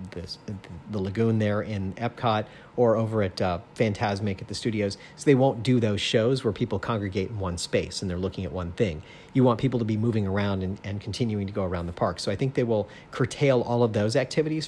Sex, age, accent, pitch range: male, 40-59, American, 100-130 Hz